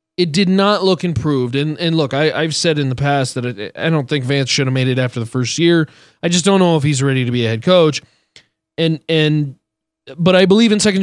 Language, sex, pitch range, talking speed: English, male, 135-185 Hz, 255 wpm